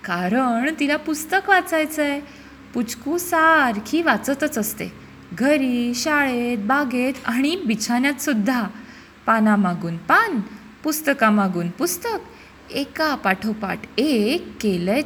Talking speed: 90 wpm